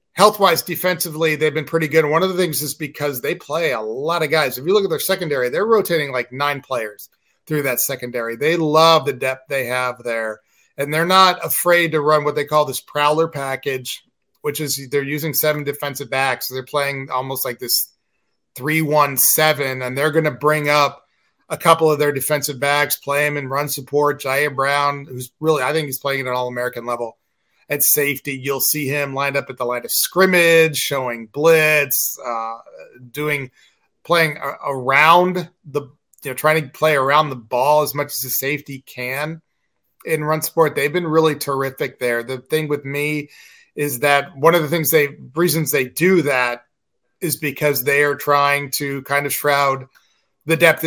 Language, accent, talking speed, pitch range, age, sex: English, American, 190 wpm, 135-155 Hz, 30-49, male